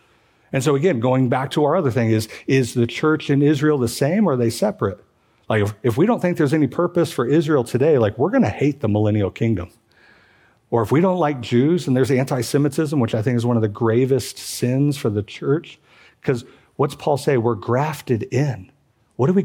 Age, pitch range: 50-69, 115-145 Hz